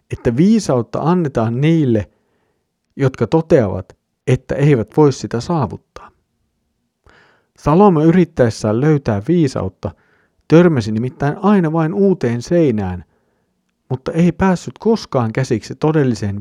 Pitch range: 110-155 Hz